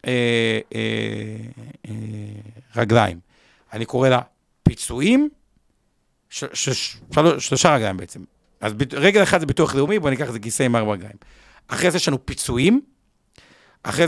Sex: male